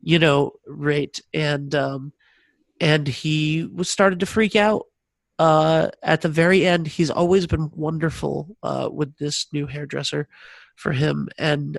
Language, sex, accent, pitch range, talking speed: English, male, American, 145-170 Hz, 150 wpm